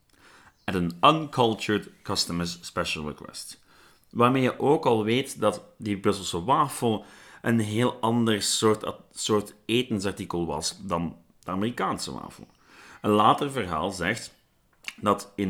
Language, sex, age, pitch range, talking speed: Dutch, male, 30-49, 90-120 Hz, 125 wpm